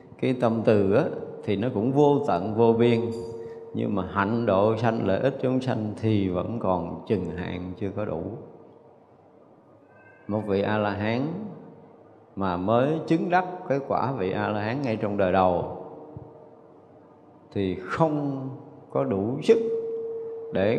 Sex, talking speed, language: male, 155 wpm, Vietnamese